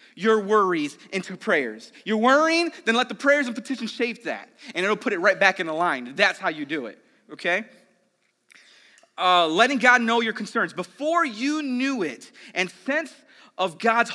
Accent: American